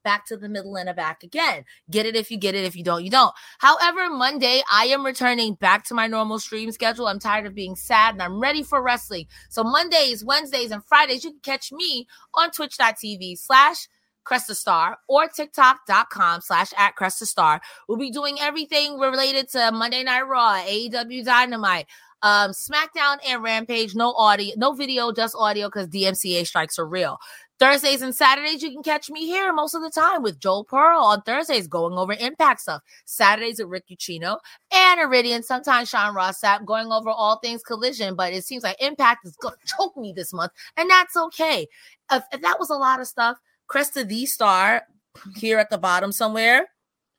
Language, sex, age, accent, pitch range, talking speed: English, female, 30-49, American, 205-275 Hz, 190 wpm